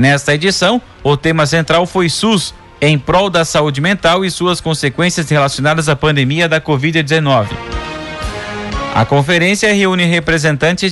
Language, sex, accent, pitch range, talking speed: Portuguese, male, Brazilian, 140-170 Hz, 130 wpm